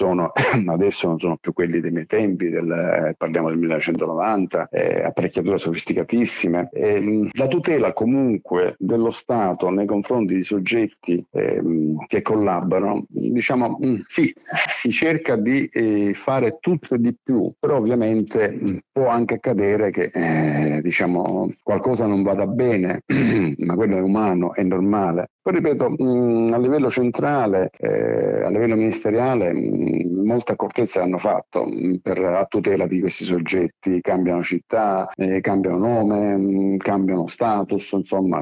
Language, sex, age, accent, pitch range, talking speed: Italian, male, 50-69, native, 90-105 Hz, 140 wpm